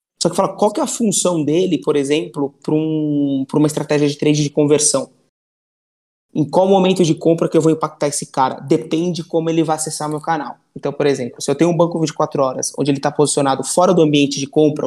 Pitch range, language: 145-160 Hz, Portuguese